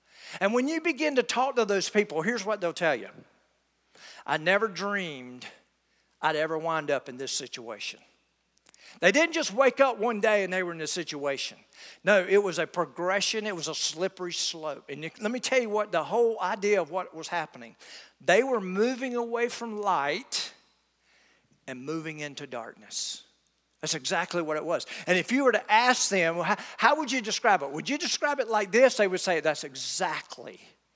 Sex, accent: male, American